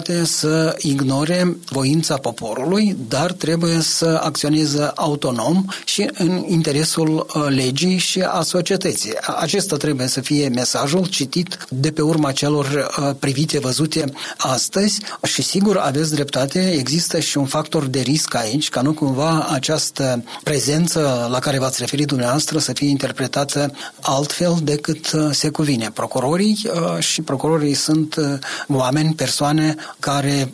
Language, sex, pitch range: Romanian, male, 135-160 Hz